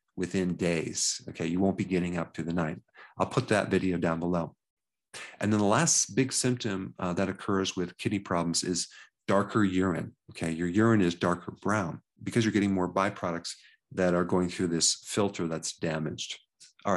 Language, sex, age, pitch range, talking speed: English, male, 40-59, 90-110 Hz, 185 wpm